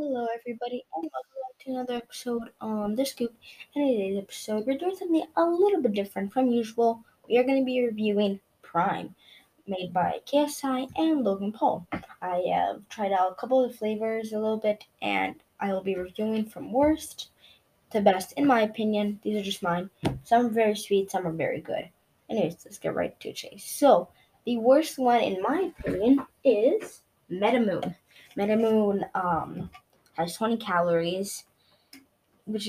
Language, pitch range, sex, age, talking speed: English, 195-260 Hz, female, 10-29, 170 wpm